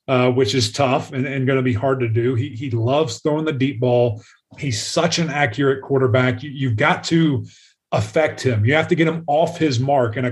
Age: 30-49